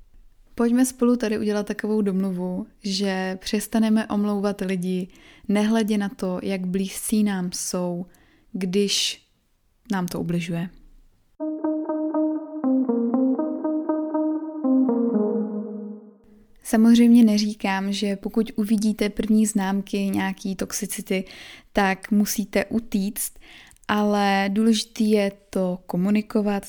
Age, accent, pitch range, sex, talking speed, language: 20-39, native, 195-225 Hz, female, 85 wpm, Czech